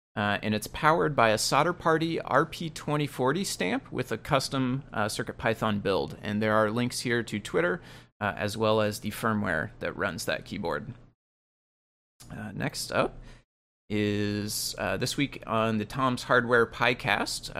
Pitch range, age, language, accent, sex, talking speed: 105-130 Hz, 30-49, English, American, male, 155 wpm